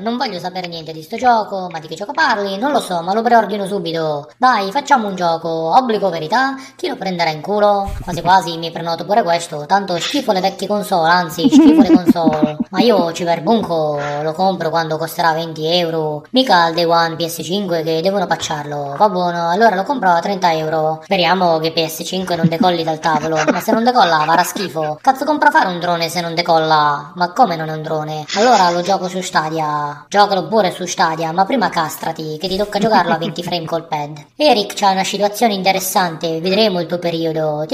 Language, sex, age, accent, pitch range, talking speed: Italian, male, 20-39, native, 165-205 Hz, 205 wpm